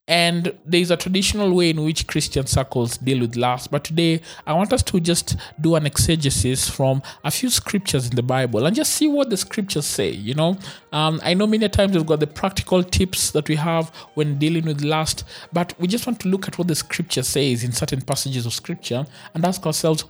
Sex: male